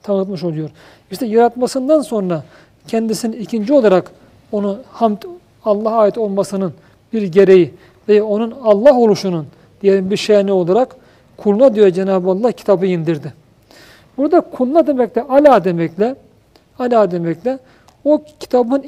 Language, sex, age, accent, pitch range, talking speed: Turkish, male, 40-59, native, 195-245 Hz, 120 wpm